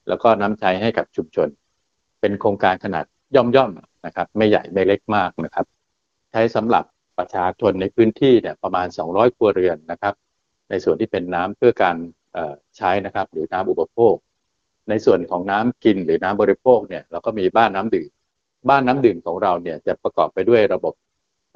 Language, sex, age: Thai, male, 60-79